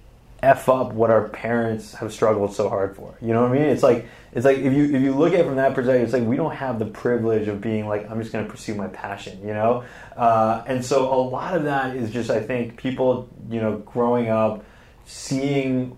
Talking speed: 245 wpm